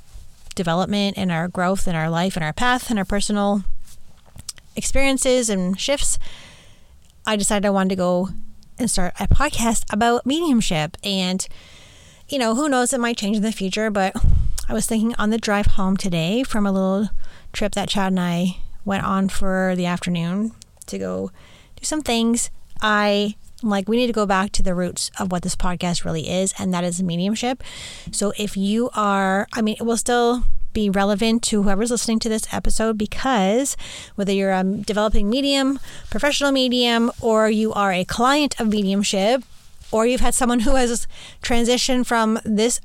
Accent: American